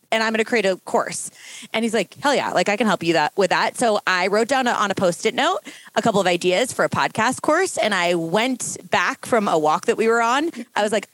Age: 20-39